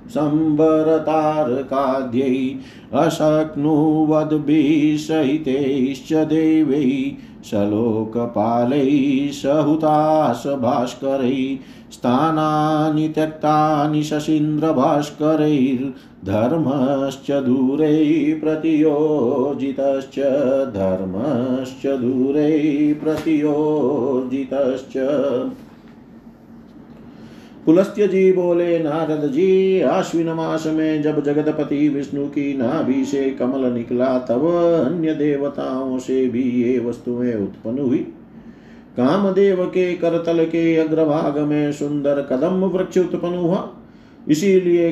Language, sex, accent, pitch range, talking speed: Hindi, male, native, 135-160 Hz, 65 wpm